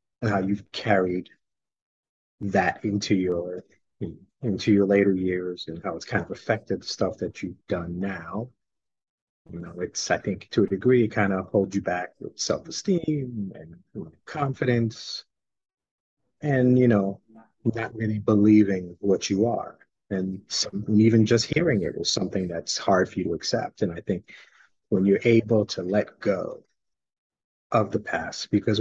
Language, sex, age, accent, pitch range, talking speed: English, male, 30-49, American, 95-115 Hz, 160 wpm